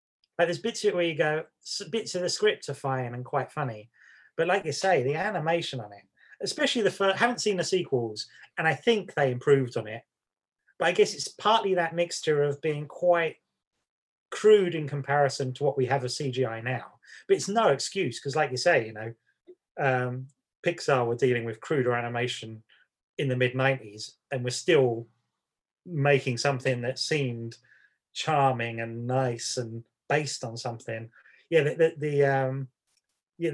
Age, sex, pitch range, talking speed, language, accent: 30-49, male, 125-165 Hz, 175 wpm, English, British